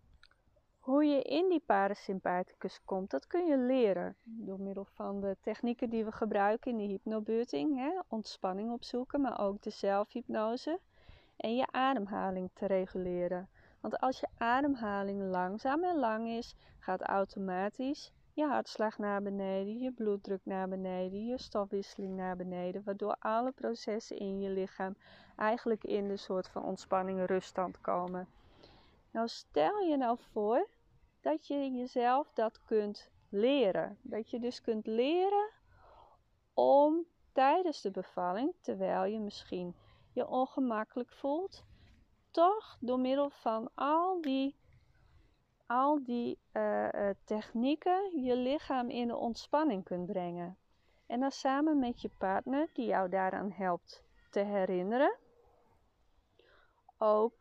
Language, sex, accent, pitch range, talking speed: Dutch, female, Dutch, 195-270 Hz, 130 wpm